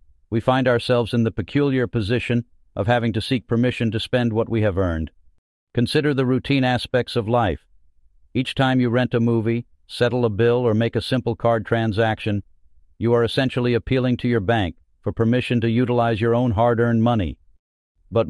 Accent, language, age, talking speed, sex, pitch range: American, English, 50-69, 180 wpm, male, 105-125 Hz